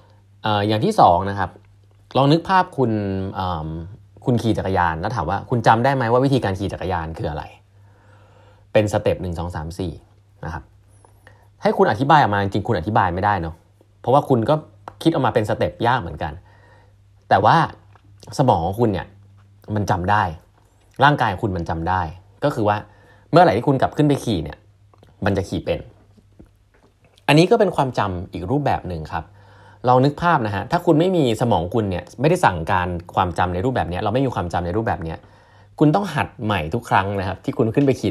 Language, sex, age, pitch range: Thai, male, 30-49, 90-115 Hz